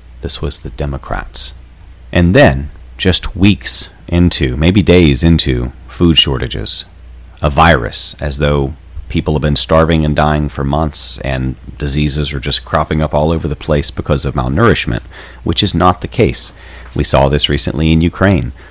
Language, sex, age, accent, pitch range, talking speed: English, male, 30-49, American, 70-90 Hz, 160 wpm